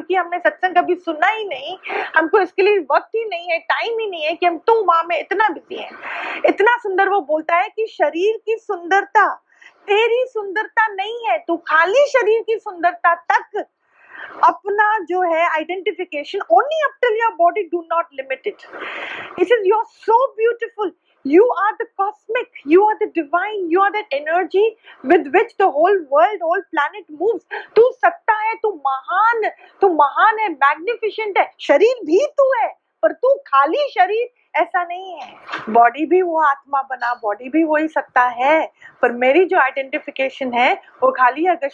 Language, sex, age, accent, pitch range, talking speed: Hindi, female, 30-49, native, 310-415 Hz, 140 wpm